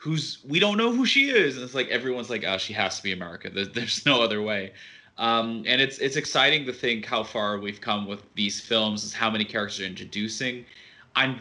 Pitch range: 110-135 Hz